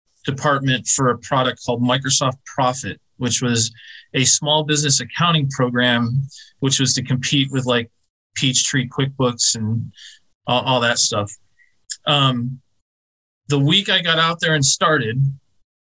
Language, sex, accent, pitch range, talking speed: English, male, American, 120-150 Hz, 135 wpm